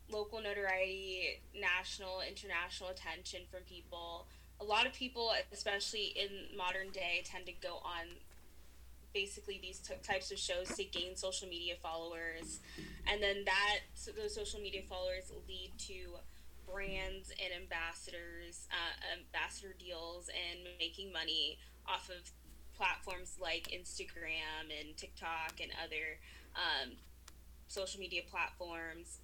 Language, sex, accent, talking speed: English, female, American, 125 wpm